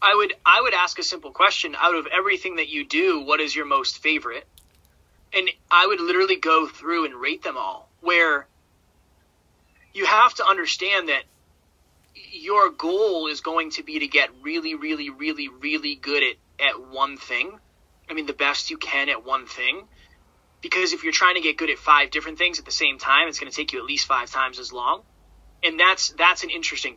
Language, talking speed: English, 205 wpm